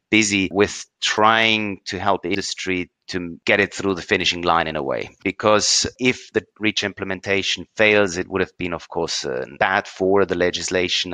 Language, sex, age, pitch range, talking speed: English, male, 30-49, 90-105 Hz, 185 wpm